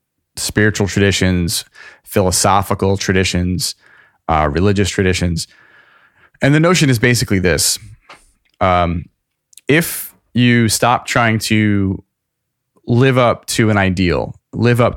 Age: 30-49